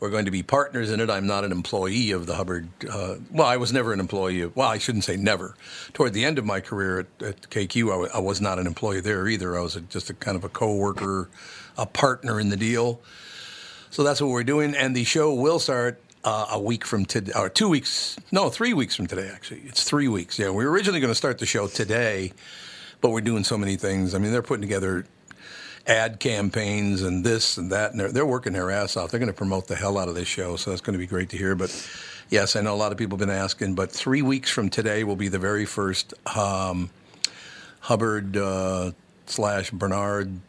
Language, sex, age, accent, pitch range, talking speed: English, male, 50-69, American, 95-115 Hz, 240 wpm